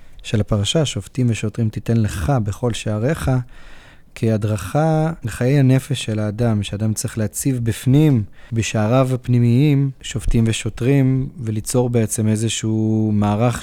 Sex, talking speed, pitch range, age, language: male, 110 wpm, 110-125 Hz, 30-49, Hebrew